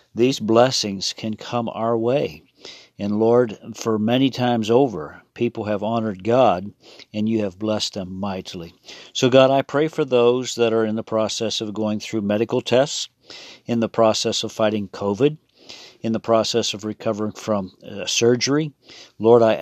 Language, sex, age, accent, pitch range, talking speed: English, male, 50-69, American, 105-120 Hz, 160 wpm